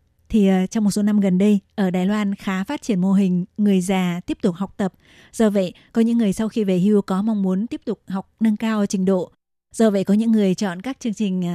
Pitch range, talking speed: 185-220 Hz, 255 wpm